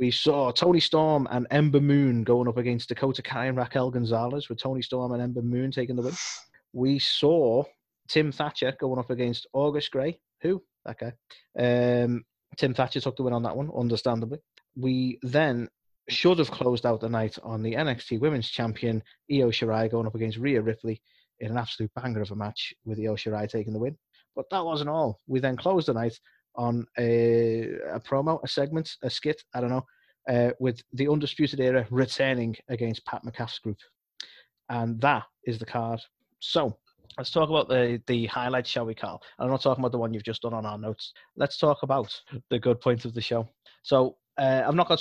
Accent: British